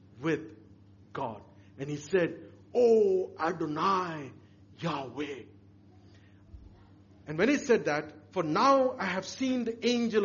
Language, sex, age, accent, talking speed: English, male, 50-69, Indian, 115 wpm